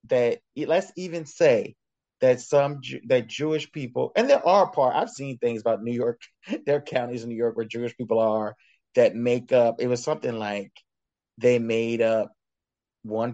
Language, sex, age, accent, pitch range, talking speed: English, male, 30-49, American, 115-140 Hz, 180 wpm